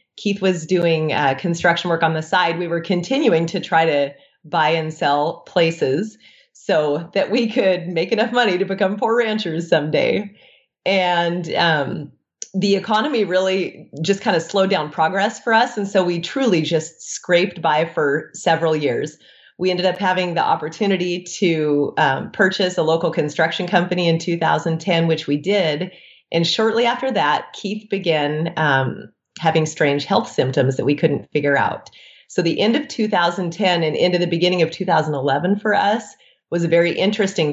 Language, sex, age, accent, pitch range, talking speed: English, female, 30-49, American, 160-200 Hz, 170 wpm